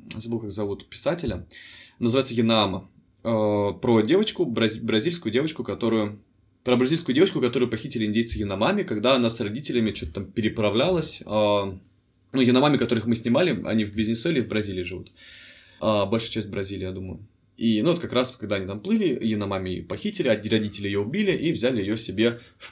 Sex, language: male, Russian